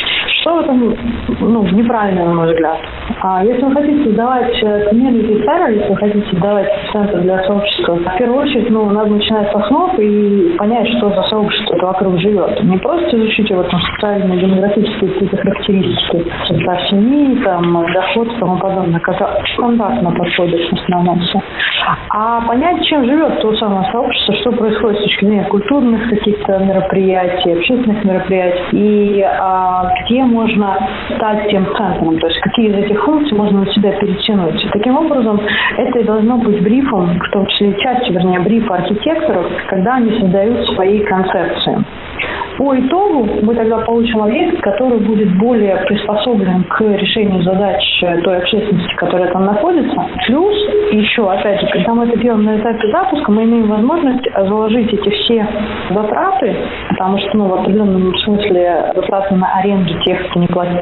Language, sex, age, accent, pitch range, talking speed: Russian, female, 30-49, native, 185-225 Hz, 145 wpm